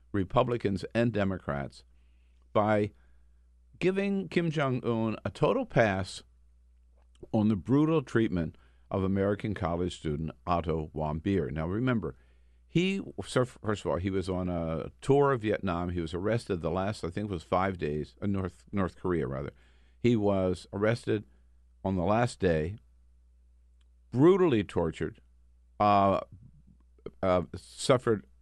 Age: 50-69